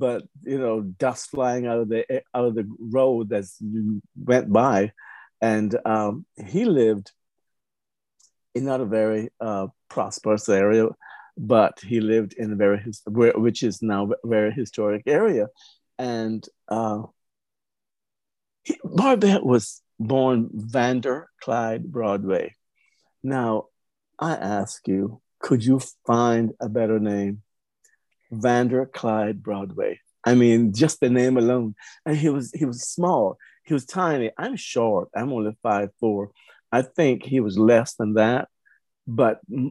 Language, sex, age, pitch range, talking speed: English, male, 50-69, 110-130 Hz, 135 wpm